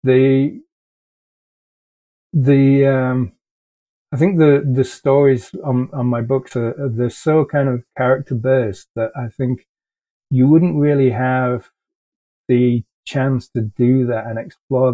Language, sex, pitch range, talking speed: English, male, 110-130 Hz, 135 wpm